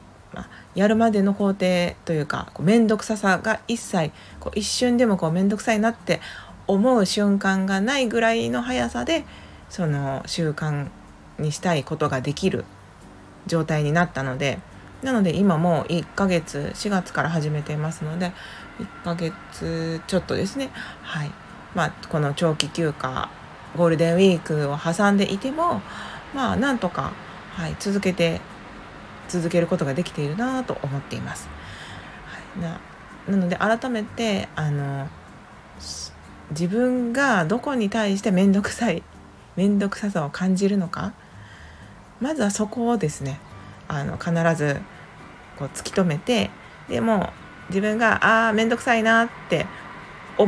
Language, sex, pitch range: Japanese, female, 150-215 Hz